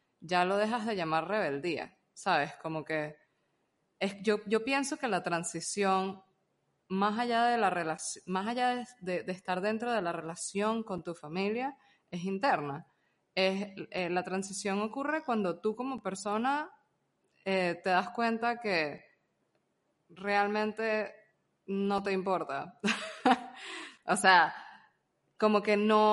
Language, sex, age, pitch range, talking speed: Spanish, female, 20-39, 175-215 Hz, 135 wpm